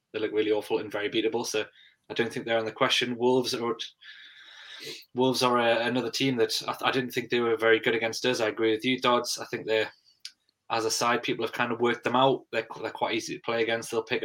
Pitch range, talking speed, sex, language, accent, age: 115-145 Hz, 255 wpm, male, English, British, 20-39